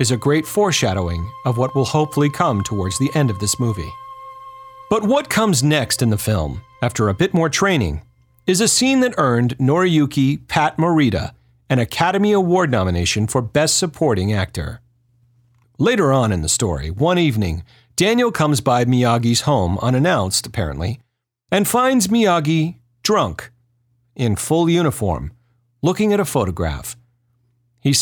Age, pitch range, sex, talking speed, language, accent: 40-59, 110-150 Hz, male, 150 wpm, English, American